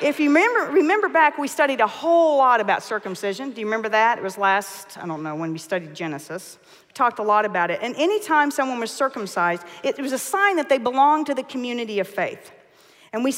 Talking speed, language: 230 wpm, English